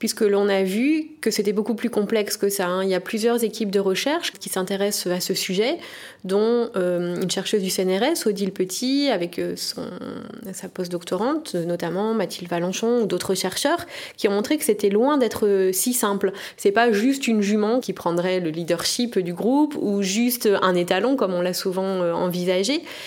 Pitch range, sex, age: 190-240 Hz, female, 20-39